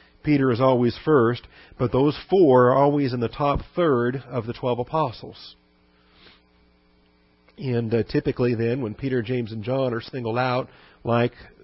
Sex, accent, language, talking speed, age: male, American, English, 155 wpm, 50-69